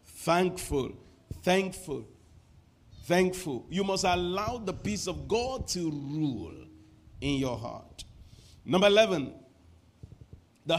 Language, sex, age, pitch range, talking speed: English, male, 50-69, 105-165 Hz, 100 wpm